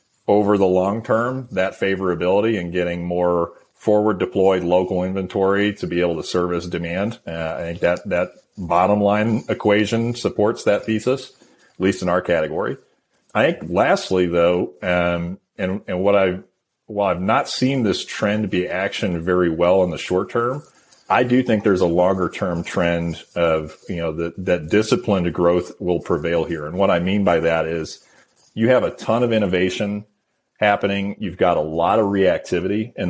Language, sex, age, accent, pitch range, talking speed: English, male, 40-59, American, 85-105 Hz, 170 wpm